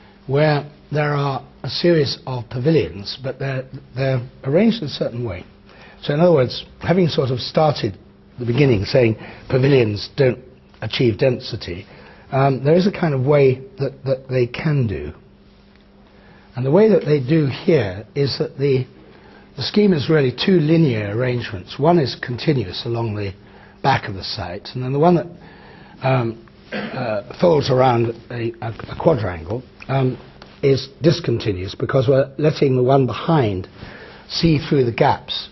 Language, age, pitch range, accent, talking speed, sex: English, 60-79, 115-145 Hz, British, 155 wpm, male